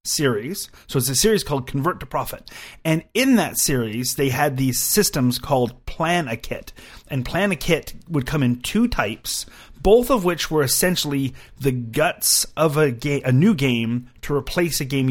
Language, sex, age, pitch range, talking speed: English, male, 30-49, 115-150 Hz, 185 wpm